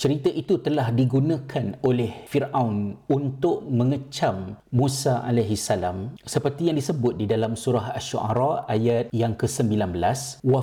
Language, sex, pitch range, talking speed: Malay, male, 115-140 Hz, 125 wpm